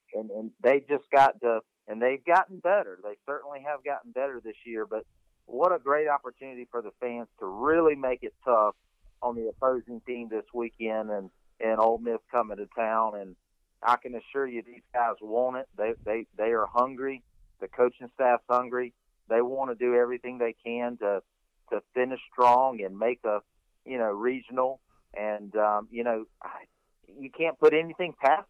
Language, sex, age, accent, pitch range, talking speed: English, male, 40-59, American, 115-140 Hz, 185 wpm